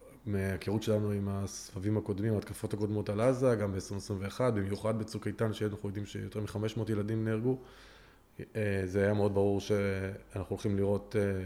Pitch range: 100-115 Hz